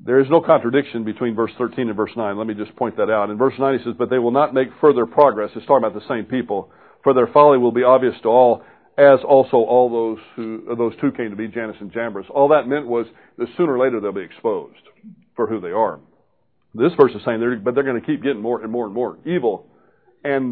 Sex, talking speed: male, 255 wpm